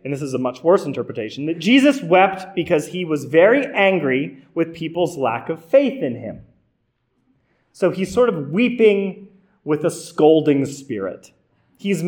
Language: English